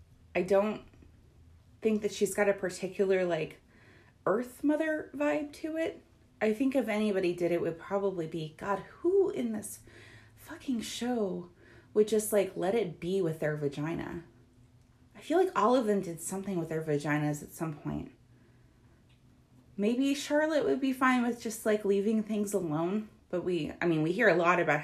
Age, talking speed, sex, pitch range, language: 20-39, 175 wpm, female, 145-215 Hz, English